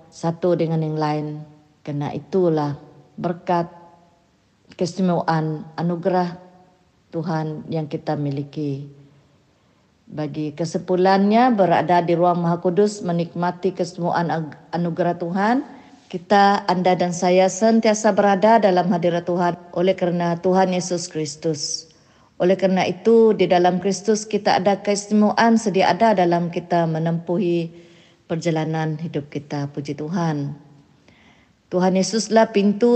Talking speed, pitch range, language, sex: 105 wpm, 160-190 Hz, Malay, female